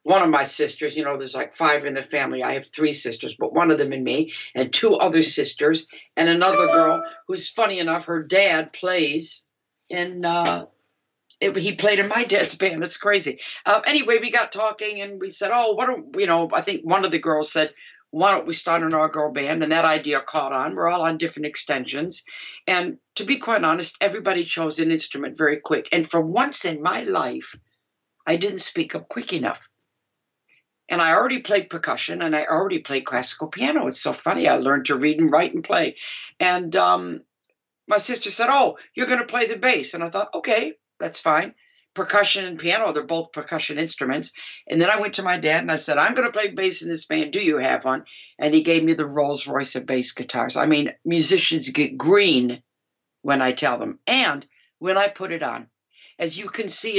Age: 60-79